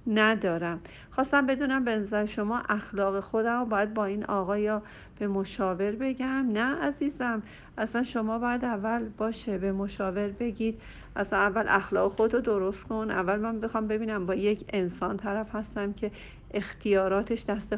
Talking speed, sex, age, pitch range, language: 150 wpm, female, 50-69, 190-225 Hz, Persian